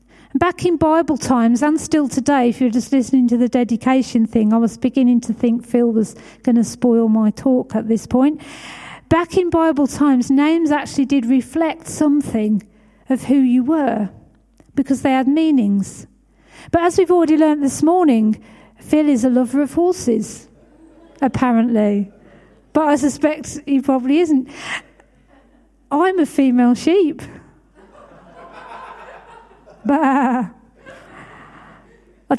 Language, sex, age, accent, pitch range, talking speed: English, female, 50-69, British, 240-305 Hz, 135 wpm